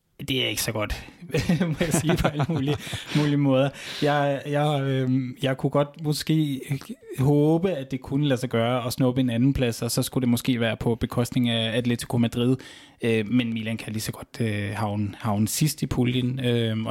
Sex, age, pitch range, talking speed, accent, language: male, 20-39, 115-135 Hz, 200 wpm, native, Danish